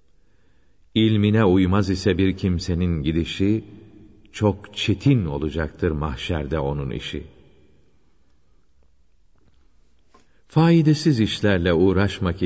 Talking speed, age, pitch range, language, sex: 70 wpm, 50-69, 75-100 Hz, Turkish, male